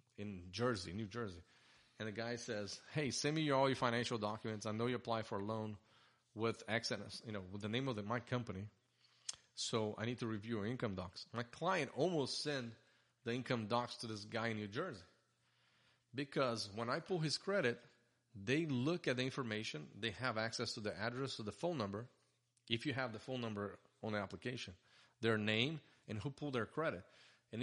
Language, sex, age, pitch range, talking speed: English, male, 30-49, 110-125 Hz, 200 wpm